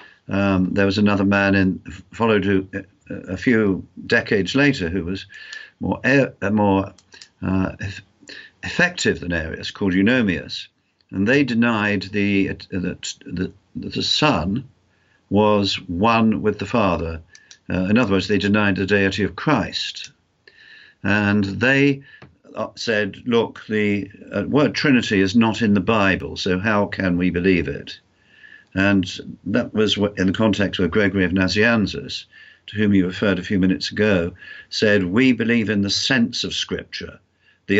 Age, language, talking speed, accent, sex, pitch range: 50-69, English, 150 wpm, British, male, 95-115 Hz